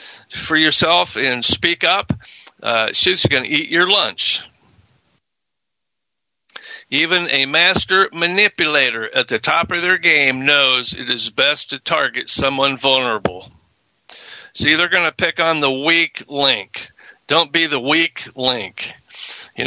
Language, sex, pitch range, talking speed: English, male, 120-155 Hz, 135 wpm